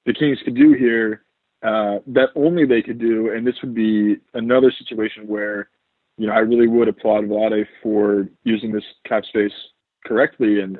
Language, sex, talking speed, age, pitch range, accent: English, male, 180 wpm, 20-39, 105-130 Hz, American